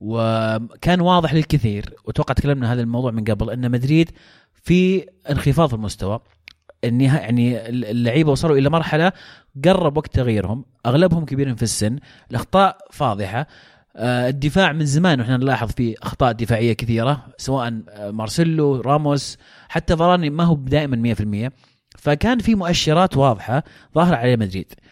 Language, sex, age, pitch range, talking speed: Arabic, male, 30-49, 115-160 Hz, 130 wpm